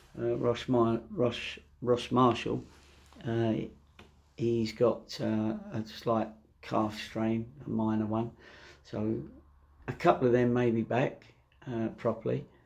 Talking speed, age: 130 wpm, 50-69